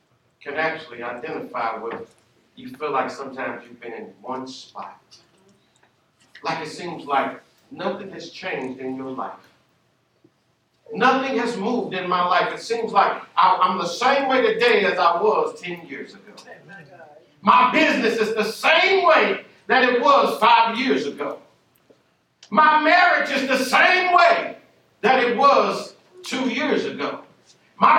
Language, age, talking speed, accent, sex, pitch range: English, 50-69, 145 wpm, American, male, 190-280 Hz